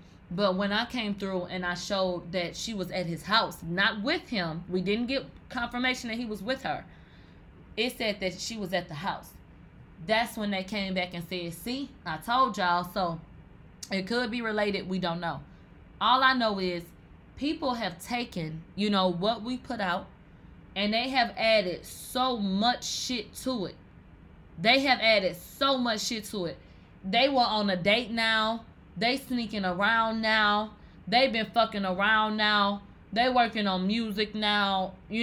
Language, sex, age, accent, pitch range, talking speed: English, female, 20-39, American, 185-235 Hz, 175 wpm